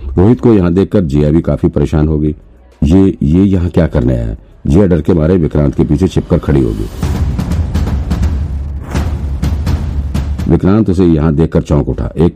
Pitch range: 75-85 Hz